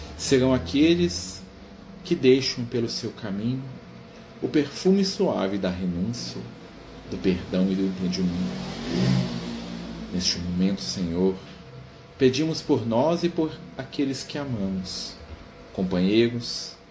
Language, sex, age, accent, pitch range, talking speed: Portuguese, male, 40-59, Brazilian, 95-140 Hz, 105 wpm